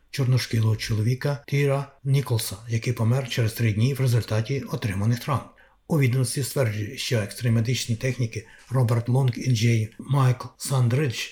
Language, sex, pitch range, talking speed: Ukrainian, male, 120-140 Hz, 135 wpm